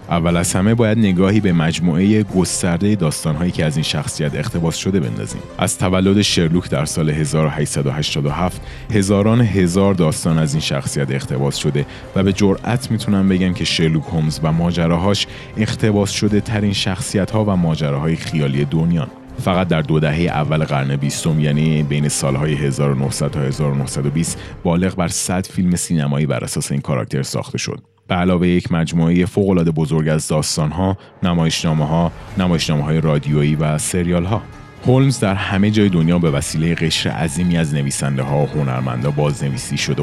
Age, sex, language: 30-49, male, Persian